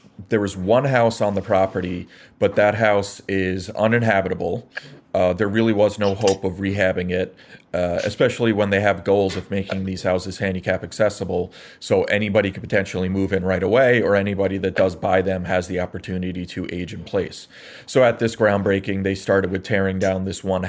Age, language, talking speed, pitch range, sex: 30-49, English, 190 wpm, 95-105 Hz, male